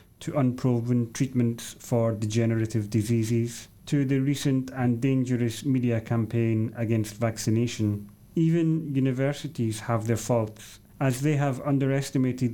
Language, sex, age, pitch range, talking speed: English, male, 30-49, 110-130 Hz, 115 wpm